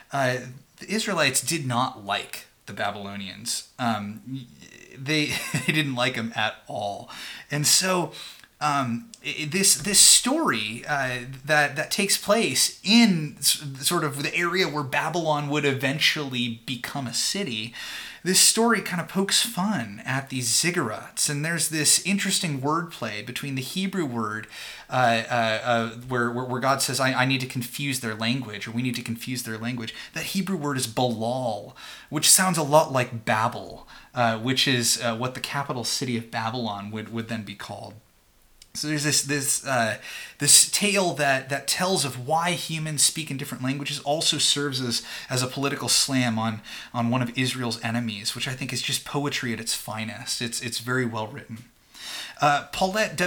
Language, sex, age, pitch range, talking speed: English, male, 30-49, 120-155 Hz, 170 wpm